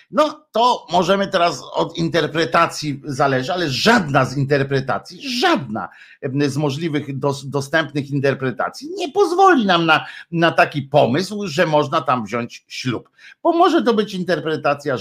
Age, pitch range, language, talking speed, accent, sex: 50-69, 125-170 Hz, Polish, 135 wpm, native, male